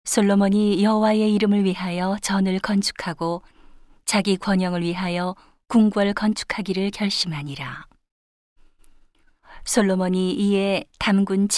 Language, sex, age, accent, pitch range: Korean, female, 40-59, native, 170-205 Hz